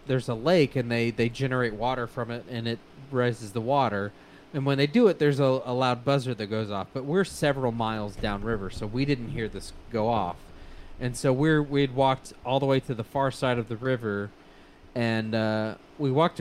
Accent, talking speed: American, 215 wpm